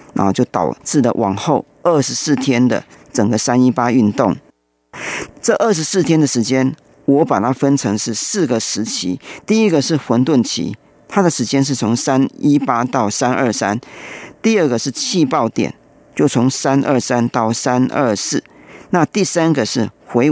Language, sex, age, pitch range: Chinese, male, 40-59, 120-155 Hz